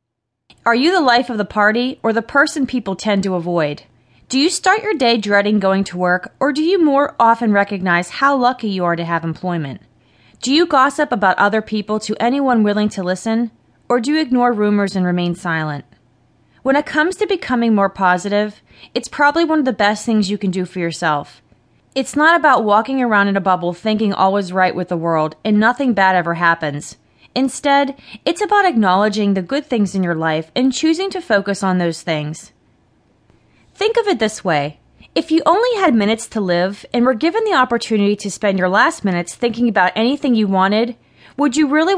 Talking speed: 200 wpm